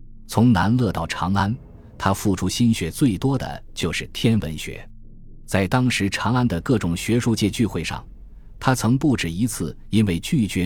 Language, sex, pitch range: Chinese, male, 85-120 Hz